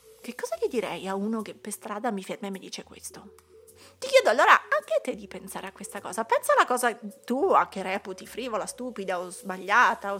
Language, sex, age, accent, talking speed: Italian, female, 30-49, native, 220 wpm